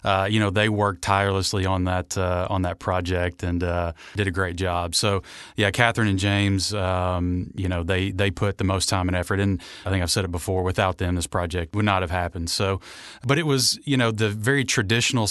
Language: English